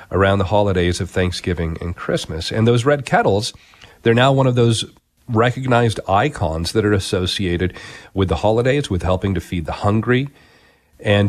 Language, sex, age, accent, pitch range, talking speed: English, male, 40-59, American, 95-120 Hz, 165 wpm